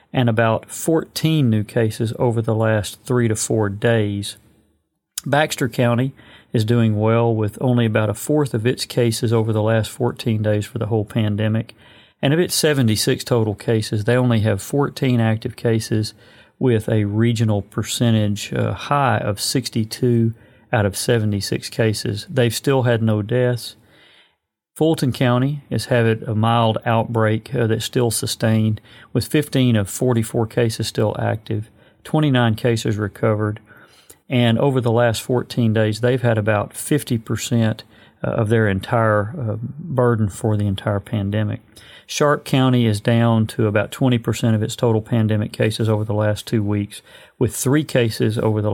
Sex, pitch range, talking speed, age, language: male, 110-125 Hz, 155 wpm, 40-59, English